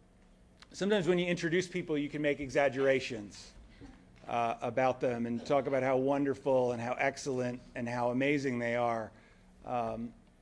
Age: 40-59